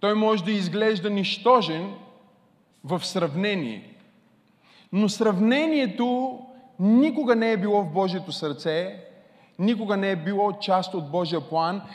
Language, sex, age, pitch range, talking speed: Bulgarian, male, 20-39, 175-220 Hz, 120 wpm